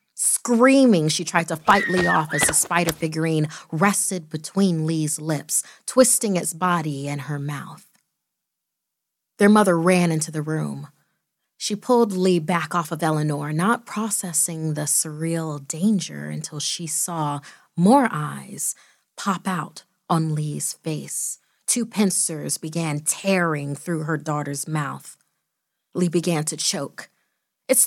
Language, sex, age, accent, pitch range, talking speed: English, female, 30-49, American, 160-200 Hz, 135 wpm